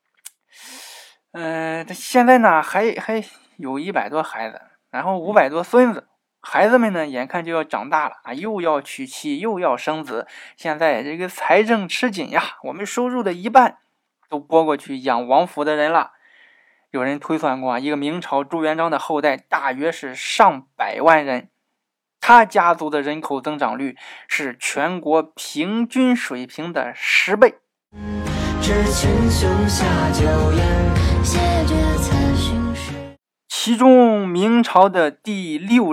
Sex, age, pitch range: male, 20-39, 140-205 Hz